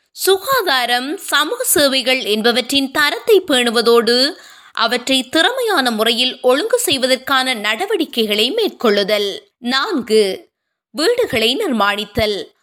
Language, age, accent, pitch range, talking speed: Tamil, 20-39, native, 235-335 Hz, 55 wpm